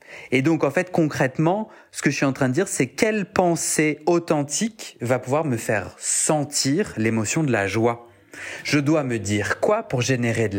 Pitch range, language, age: 115-160 Hz, French, 30-49